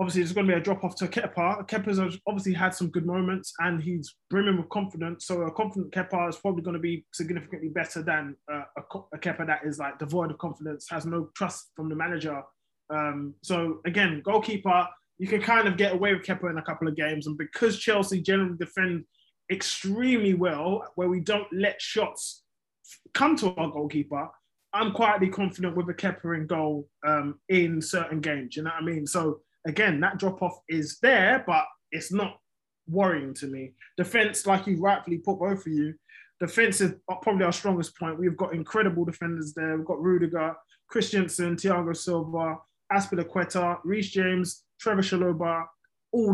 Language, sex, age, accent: English, male, 20-39, British